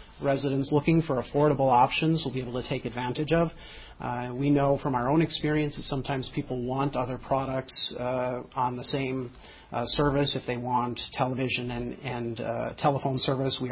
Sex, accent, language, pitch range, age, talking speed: male, American, English, 125-140 Hz, 40-59, 180 wpm